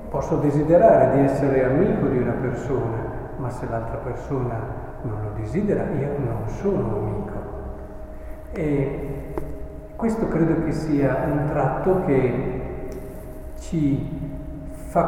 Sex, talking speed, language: male, 120 wpm, Italian